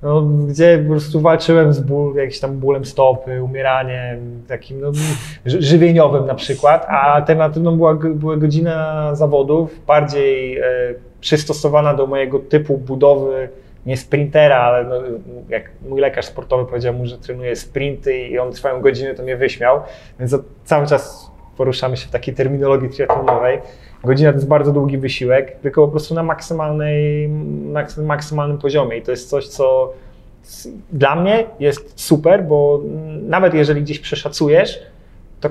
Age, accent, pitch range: 20-39, native, 130-155 Hz